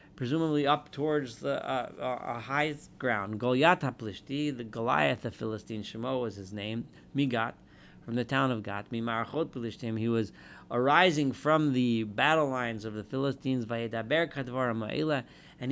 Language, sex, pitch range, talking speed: English, male, 115-155 Hz, 150 wpm